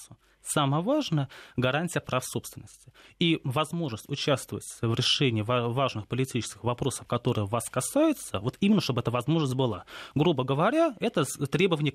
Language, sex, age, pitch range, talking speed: Russian, male, 20-39, 125-160 Hz, 130 wpm